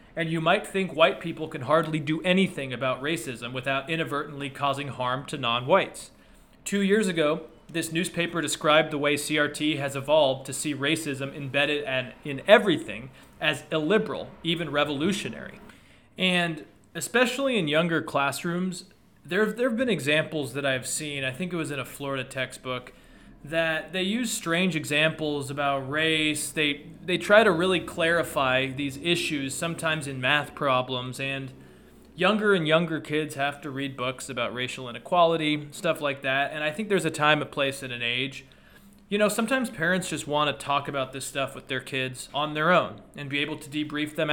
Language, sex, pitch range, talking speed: English, male, 135-165 Hz, 170 wpm